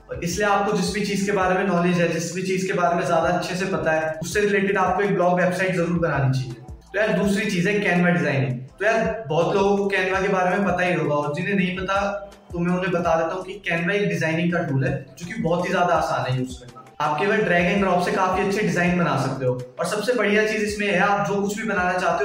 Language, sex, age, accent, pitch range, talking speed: Hindi, male, 20-39, native, 165-200 Hz, 250 wpm